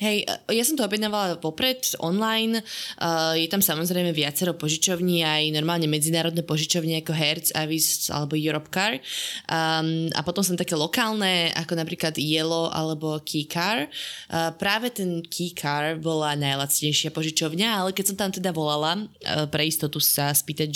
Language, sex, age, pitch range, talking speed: Slovak, female, 20-39, 155-185 Hz, 155 wpm